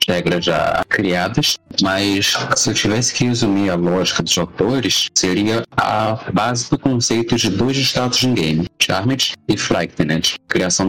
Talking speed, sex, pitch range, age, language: 150 wpm, male, 95-115 Hz, 30-49, Portuguese